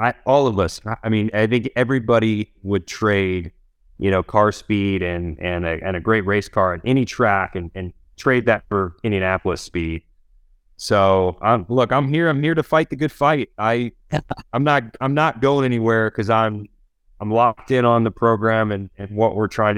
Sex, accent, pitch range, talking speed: male, American, 95-120 Hz, 195 wpm